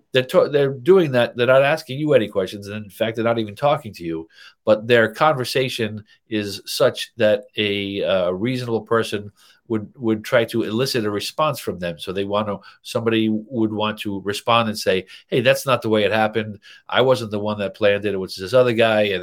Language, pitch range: English, 100-125 Hz